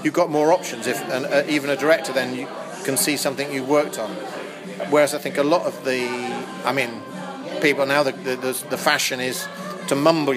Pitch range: 135-160 Hz